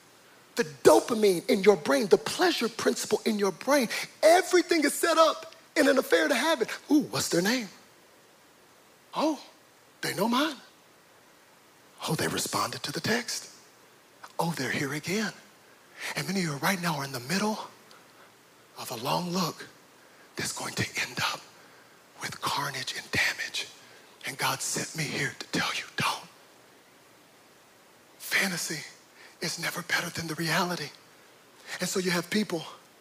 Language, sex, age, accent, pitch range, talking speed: English, male, 40-59, American, 175-290 Hz, 150 wpm